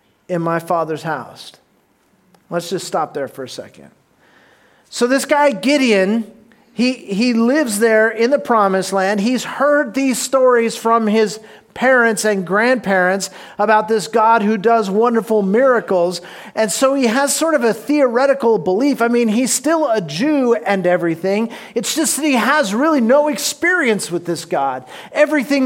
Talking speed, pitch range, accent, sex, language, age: 160 wpm, 200-255 Hz, American, male, English, 40-59